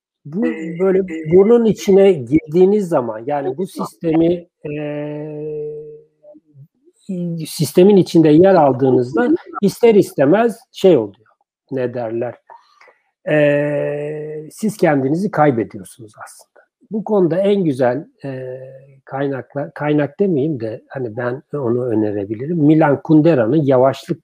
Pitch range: 135-190 Hz